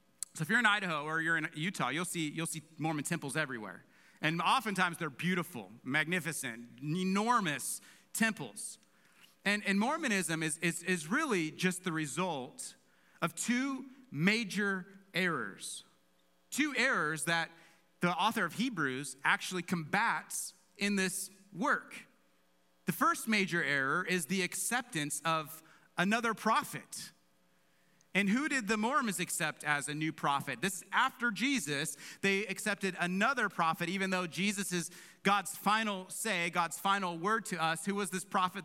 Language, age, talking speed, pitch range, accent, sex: English, 30-49, 145 wpm, 160-200 Hz, American, male